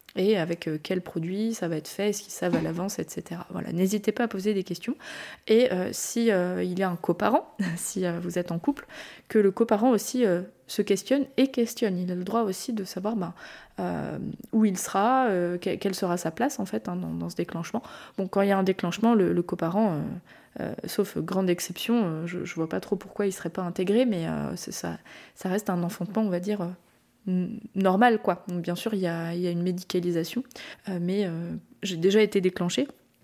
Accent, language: French, French